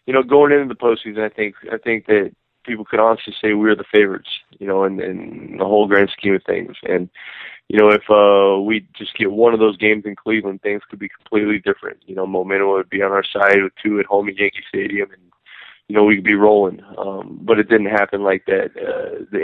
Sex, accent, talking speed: male, American, 245 wpm